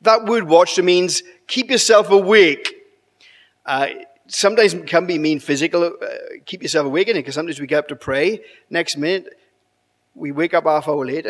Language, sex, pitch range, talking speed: English, male, 155-235 Hz, 175 wpm